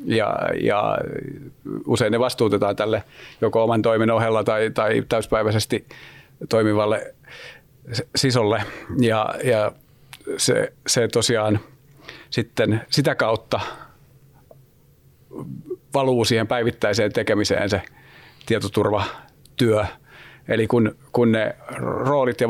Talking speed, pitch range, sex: 95 wpm, 110-130 Hz, male